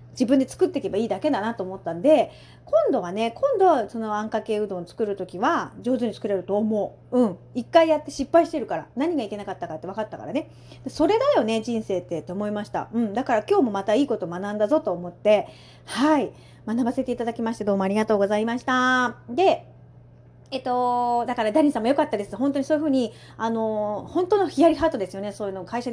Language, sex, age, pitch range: Japanese, female, 40-59, 210-305 Hz